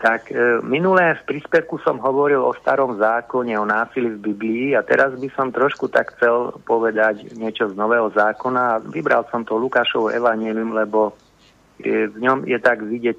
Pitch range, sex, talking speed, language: 105-120 Hz, male, 175 wpm, Slovak